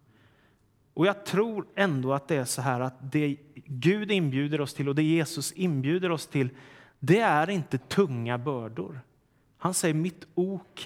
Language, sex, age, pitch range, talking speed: Swedish, male, 30-49, 135-190 Hz, 165 wpm